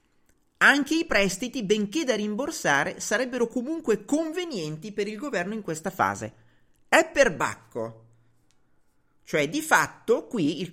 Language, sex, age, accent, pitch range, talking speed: Italian, male, 40-59, native, 160-255 Hz, 130 wpm